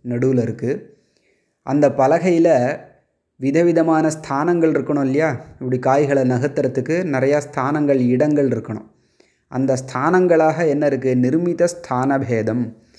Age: 20-39